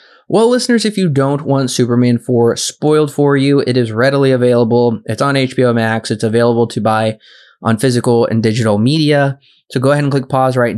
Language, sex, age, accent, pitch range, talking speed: English, male, 20-39, American, 110-140 Hz, 195 wpm